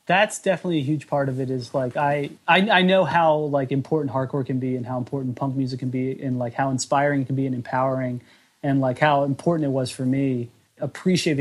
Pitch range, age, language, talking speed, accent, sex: 125-145 Hz, 30-49, English, 230 wpm, American, male